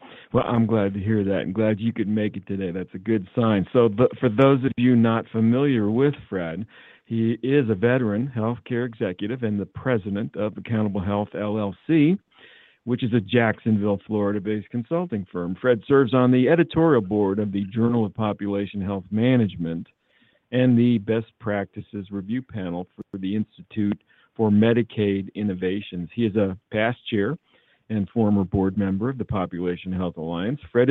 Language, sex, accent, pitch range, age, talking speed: English, male, American, 100-120 Hz, 50-69, 170 wpm